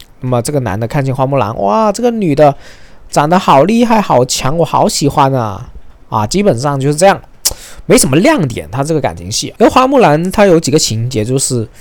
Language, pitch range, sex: Chinese, 120-165 Hz, male